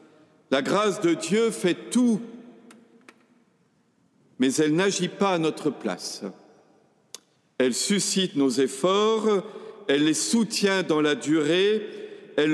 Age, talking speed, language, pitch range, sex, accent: 50-69, 120 wpm, French, 145-195 Hz, male, French